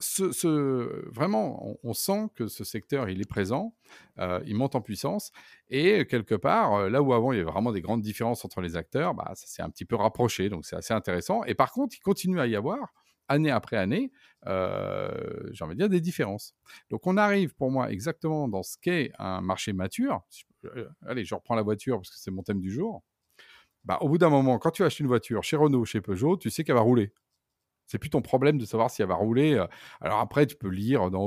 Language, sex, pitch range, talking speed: French, male, 100-145 Hz, 230 wpm